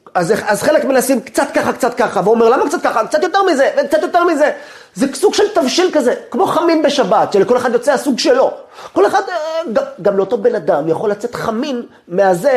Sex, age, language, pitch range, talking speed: male, 30-49, Hebrew, 225-320 Hz, 200 wpm